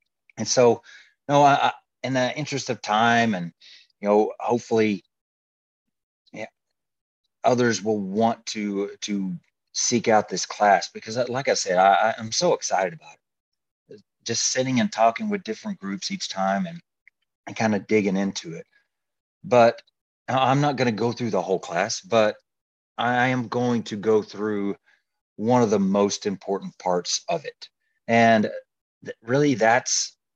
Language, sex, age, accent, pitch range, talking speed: English, male, 30-49, American, 100-125 Hz, 160 wpm